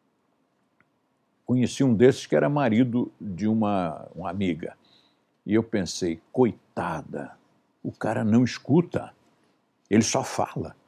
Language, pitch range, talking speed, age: Portuguese, 105-170 Hz, 115 wpm, 60-79